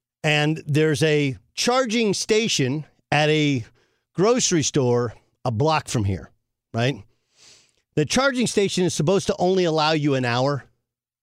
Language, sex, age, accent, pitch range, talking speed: English, male, 50-69, American, 125-180 Hz, 135 wpm